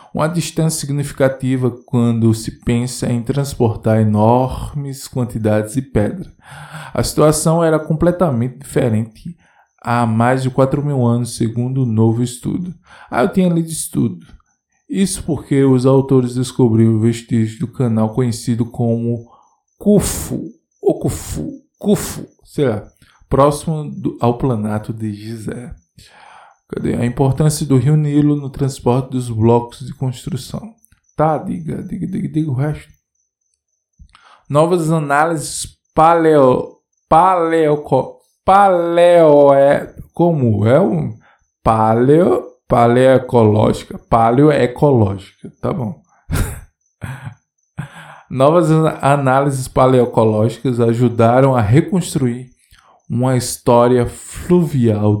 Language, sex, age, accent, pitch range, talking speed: Portuguese, male, 20-39, Brazilian, 120-155 Hz, 110 wpm